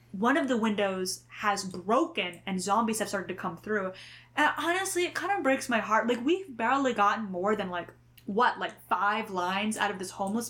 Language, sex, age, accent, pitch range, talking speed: English, female, 10-29, American, 195-235 Hz, 205 wpm